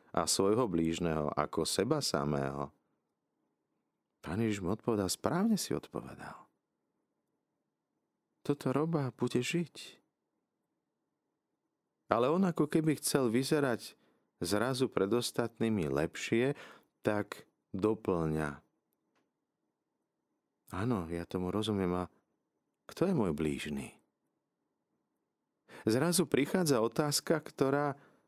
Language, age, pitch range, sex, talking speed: Slovak, 40-59, 85-130 Hz, male, 85 wpm